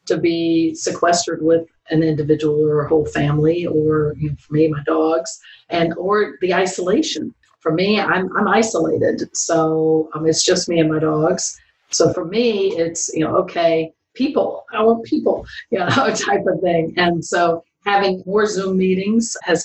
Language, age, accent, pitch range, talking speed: English, 50-69, American, 160-190 Hz, 175 wpm